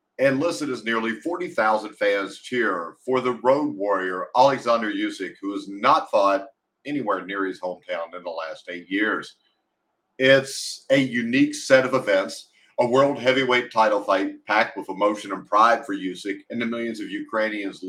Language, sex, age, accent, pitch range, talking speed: English, male, 50-69, American, 100-140 Hz, 165 wpm